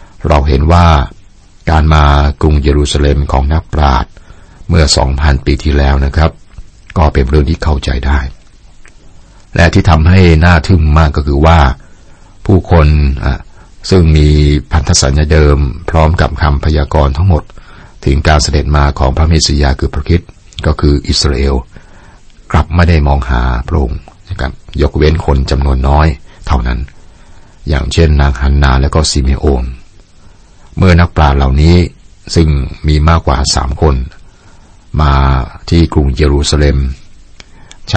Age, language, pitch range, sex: 60-79, Thai, 70-80 Hz, male